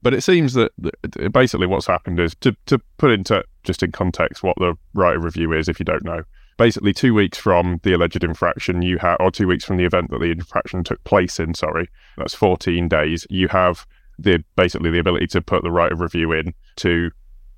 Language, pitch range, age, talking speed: English, 85-100 Hz, 20-39, 220 wpm